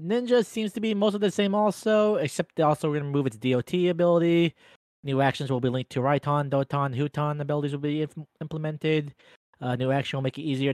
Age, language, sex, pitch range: 20-39, English, male, 130-160 Hz